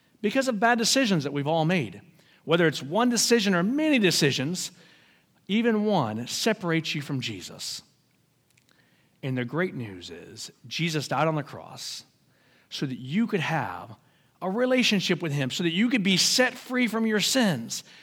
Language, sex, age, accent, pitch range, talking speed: English, male, 50-69, American, 130-185 Hz, 165 wpm